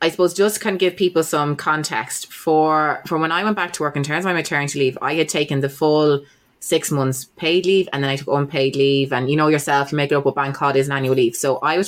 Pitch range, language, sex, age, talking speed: 130-155 Hz, English, female, 20-39, 285 wpm